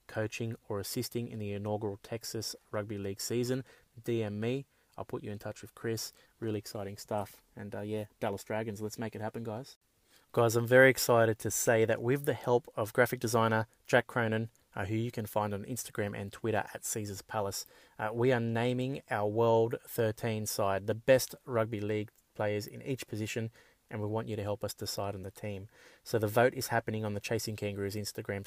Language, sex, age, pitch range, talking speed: English, male, 20-39, 105-120 Hz, 200 wpm